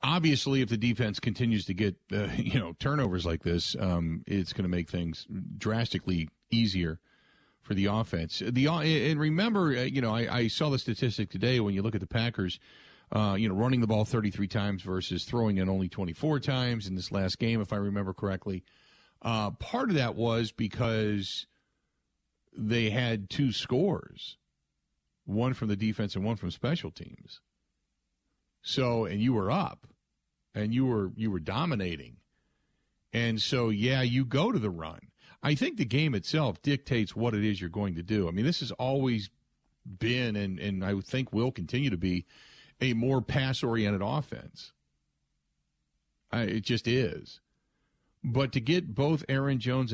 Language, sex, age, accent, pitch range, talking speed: English, male, 40-59, American, 100-130 Hz, 170 wpm